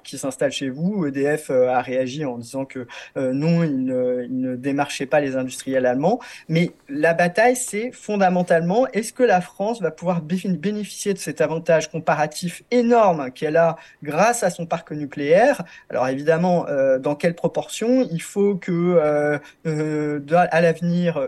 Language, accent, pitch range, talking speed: French, French, 145-185 Hz, 170 wpm